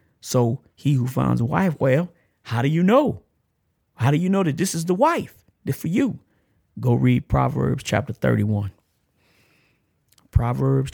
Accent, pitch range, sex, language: American, 110-145 Hz, male, English